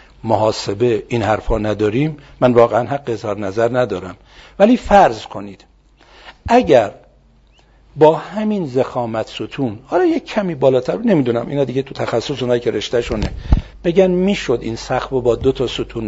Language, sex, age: Persian, male, 60-79